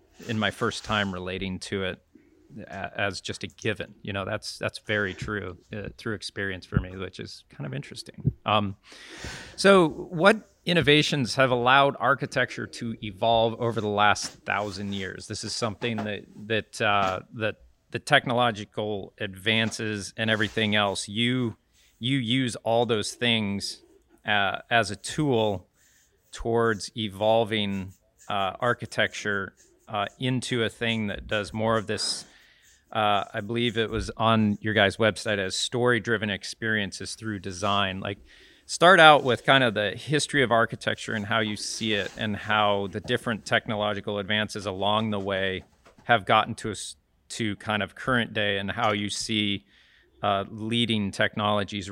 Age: 30-49